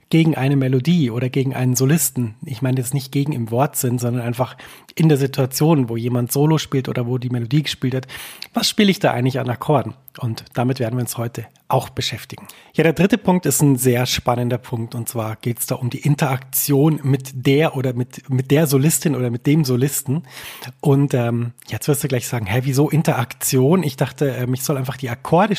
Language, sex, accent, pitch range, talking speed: German, male, German, 125-150 Hz, 210 wpm